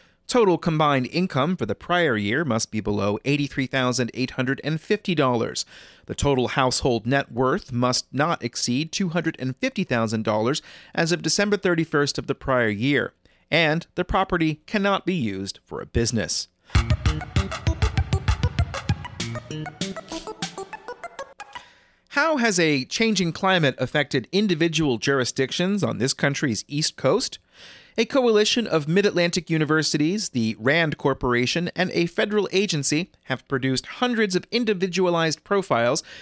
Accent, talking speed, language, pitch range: American, 115 wpm, English, 130-180 Hz